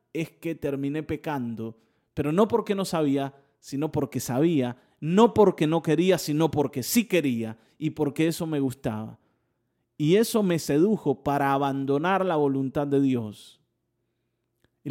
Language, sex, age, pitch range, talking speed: Spanish, male, 30-49, 140-210 Hz, 145 wpm